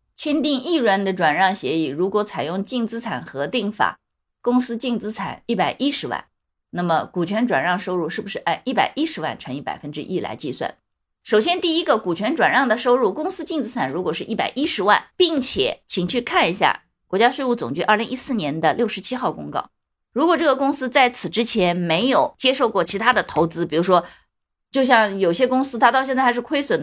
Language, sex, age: Chinese, female, 20-39